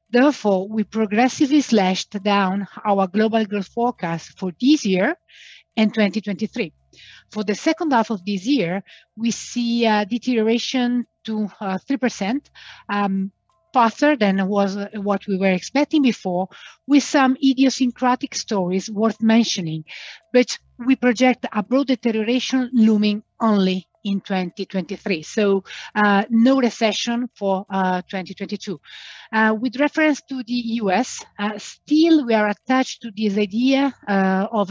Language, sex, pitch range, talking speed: English, female, 200-245 Hz, 130 wpm